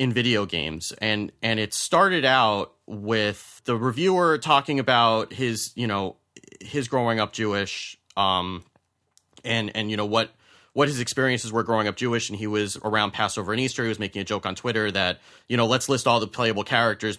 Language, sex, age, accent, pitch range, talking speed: English, male, 30-49, American, 105-125 Hz, 195 wpm